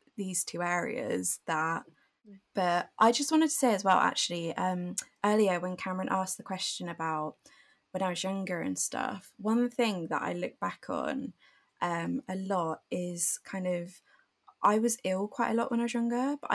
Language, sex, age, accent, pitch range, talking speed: English, female, 20-39, British, 180-235 Hz, 185 wpm